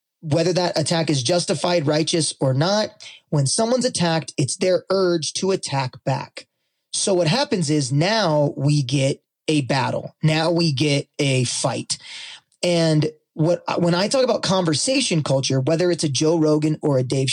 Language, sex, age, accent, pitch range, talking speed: English, male, 20-39, American, 145-180 Hz, 165 wpm